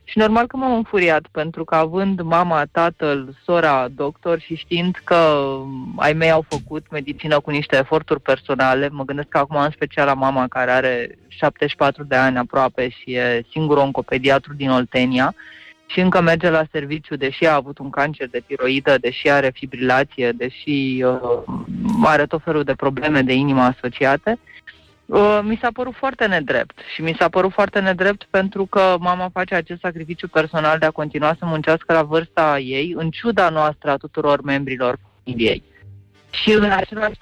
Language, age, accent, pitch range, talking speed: Italian, 20-39, Romanian, 135-180 Hz, 170 wpm